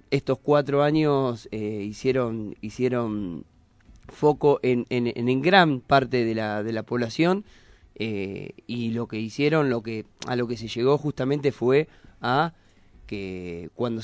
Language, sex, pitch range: Spanish, male, 115-140 Hz